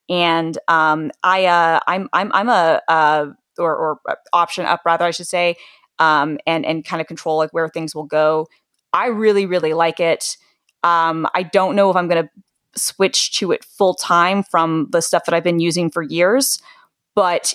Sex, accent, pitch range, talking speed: female, American, 165-190 Hz, 190 wpm